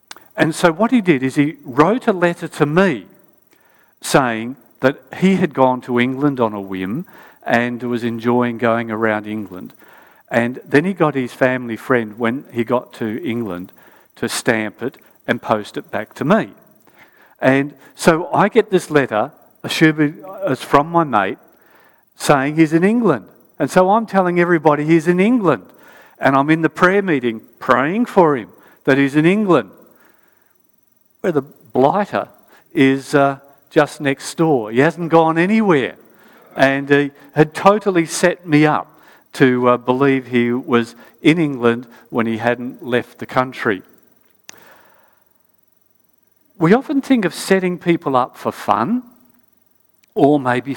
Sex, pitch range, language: male, 120-170 Hz, English